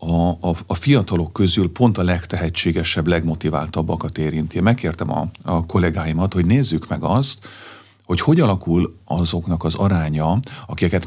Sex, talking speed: male, 135 wpm